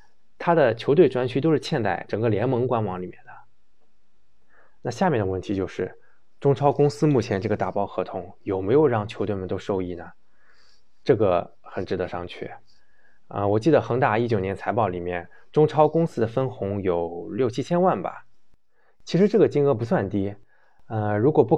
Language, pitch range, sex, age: Chinese, 95-120 Hz, male, 20-39